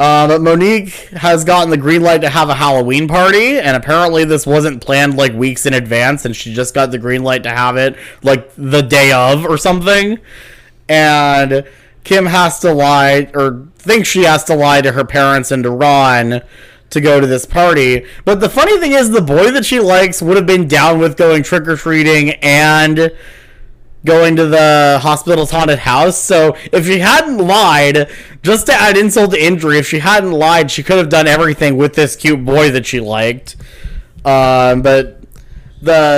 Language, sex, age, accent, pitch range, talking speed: English, male, 20-39, American, 135-175 Hz, 190 wpm